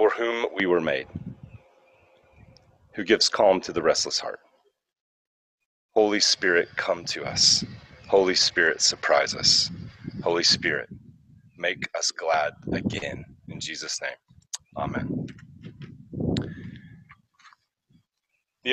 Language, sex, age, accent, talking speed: English, male, 30-49, American, 105 wpm